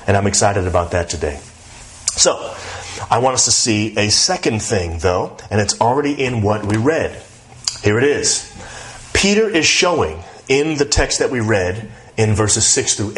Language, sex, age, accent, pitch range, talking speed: English, male, 30-49, American, 110-140 Hz, 180 wpm